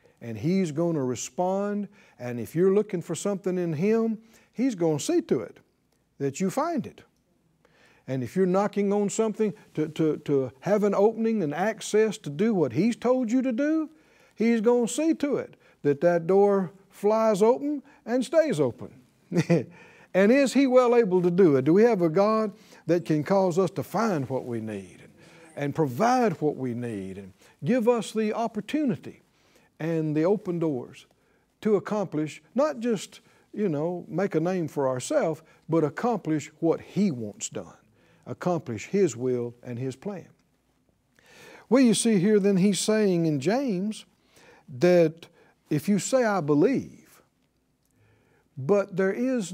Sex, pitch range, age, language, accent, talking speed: male, 155-215 Hz, 60-79, English, American, 165 wpm